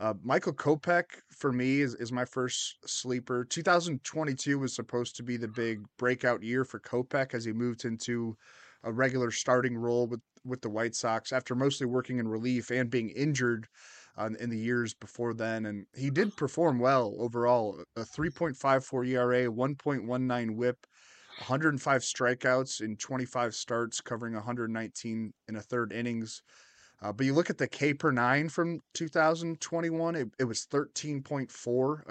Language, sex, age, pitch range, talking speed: English, male, 20-39, 120-140 Hz, 160 wpm